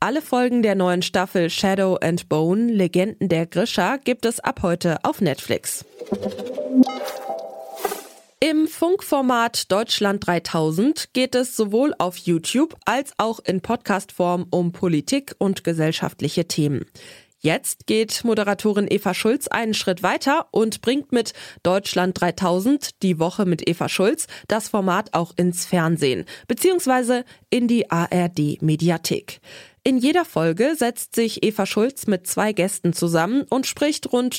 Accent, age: German, 20-39